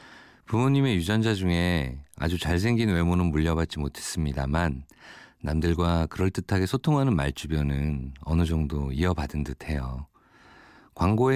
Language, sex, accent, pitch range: Korean, male, native, 75-105 Hz